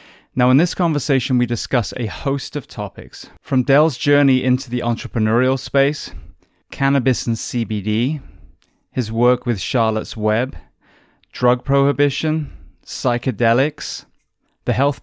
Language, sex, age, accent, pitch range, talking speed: English, male, 20-39, British, 110-145 Hz, 120 wpm